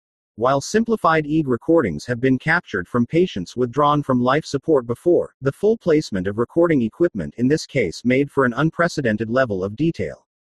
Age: 40-59